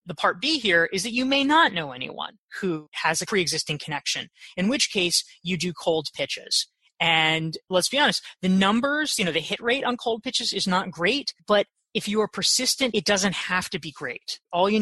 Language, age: English, 20-39